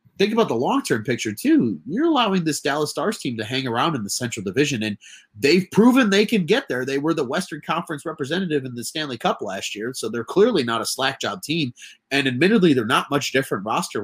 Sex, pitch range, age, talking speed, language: male, 120-165 Hz, 30-49, 225 wpm, English